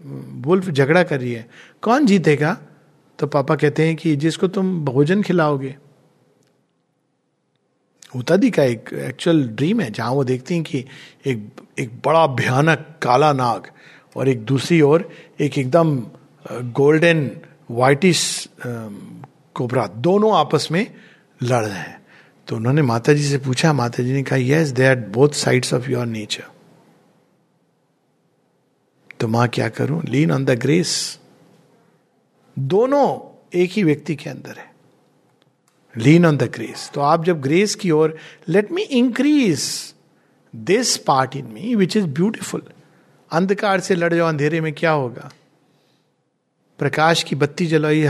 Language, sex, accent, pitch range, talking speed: Hindi, male, native, 135-175 Hz, 140 wpm